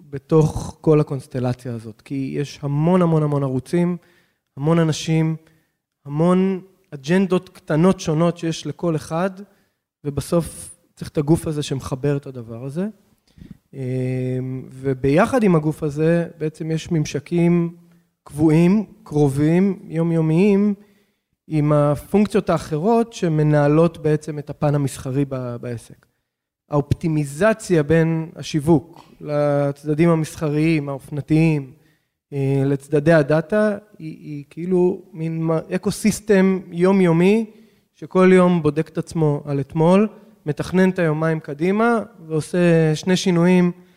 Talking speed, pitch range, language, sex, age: 100 wpm, 145-180 Hz, Hebrew, male, 20-39